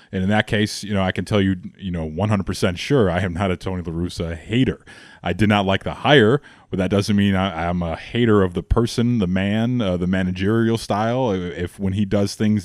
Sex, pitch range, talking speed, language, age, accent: male, 95-125 Hz, 240 wpm, English, 20-39, American